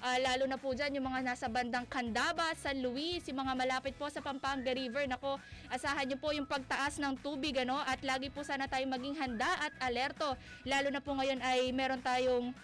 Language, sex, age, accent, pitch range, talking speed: Filipino, female, 20-39, native, 265-320 Hz, 210 wpm